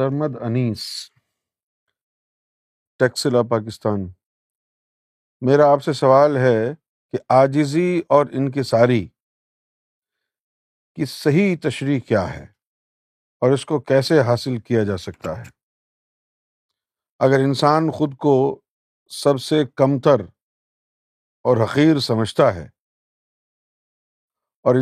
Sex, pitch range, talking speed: male, 115-150 Hz, 90 wpm